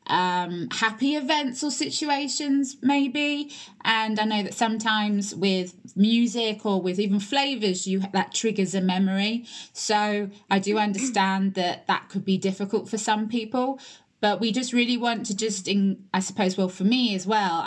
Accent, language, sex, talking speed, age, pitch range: British, English, female, 165 wpm, 20-39, 195-240 Hz